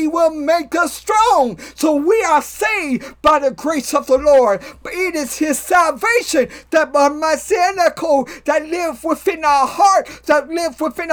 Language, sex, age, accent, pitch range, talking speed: English, male, 50-69, American, 280-330 Hz, 160 wpm